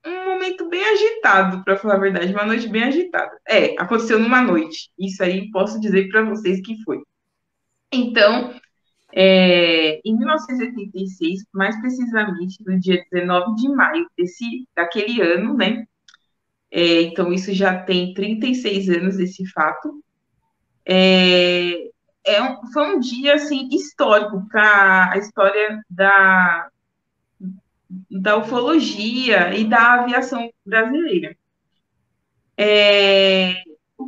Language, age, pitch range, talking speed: Portuguese, 20-39, 185-255 Hz, 105 wpm